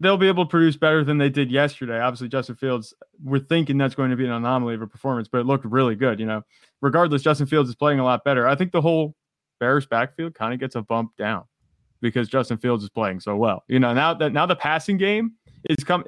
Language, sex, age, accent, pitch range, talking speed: English, male, 20-39, American, 115-145 Hz, 255 wpm